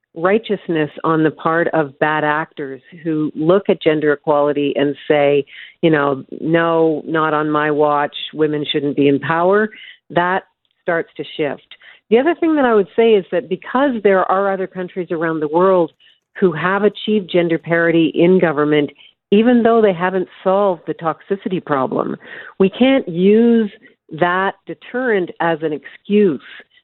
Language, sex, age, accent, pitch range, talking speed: English, female, 50-69, American, 155-190 Hz, 155 wpm